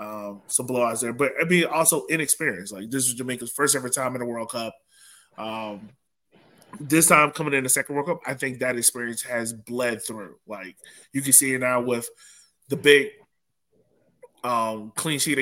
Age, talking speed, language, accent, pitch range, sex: 20-39, 185 wpm, English, American, 115-135 Hz, male